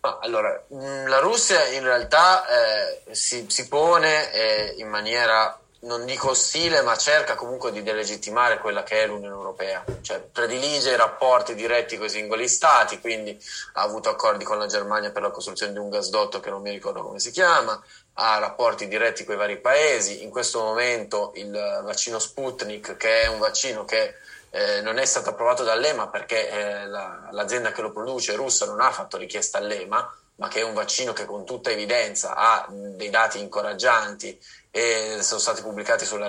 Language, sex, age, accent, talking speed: Italian, male, 20-39, native, 180 wpm